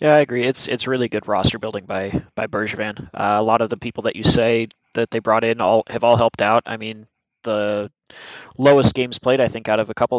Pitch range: 105-125 Hz